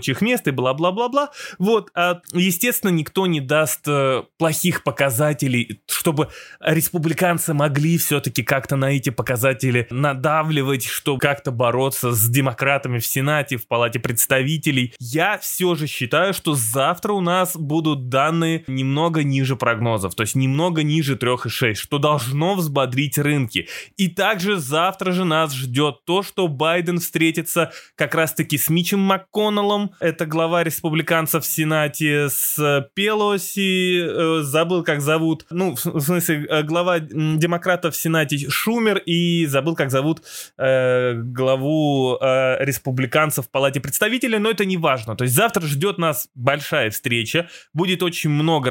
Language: Russian